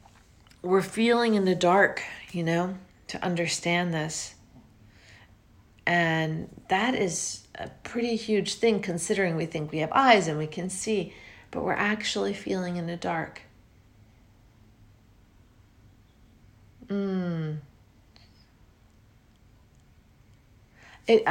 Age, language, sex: 40-59, English, female